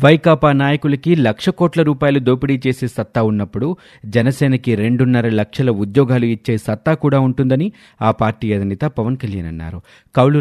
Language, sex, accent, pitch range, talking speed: Telugu, male, native, 105-140 Hz, 140 wpm